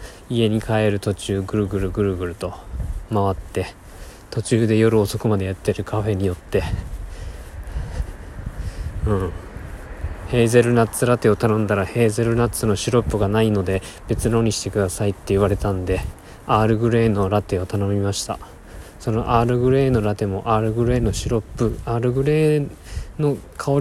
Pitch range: 95-115 Hz